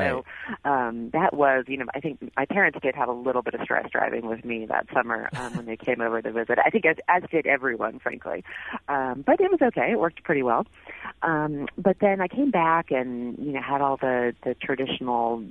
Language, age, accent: English, 30-49, American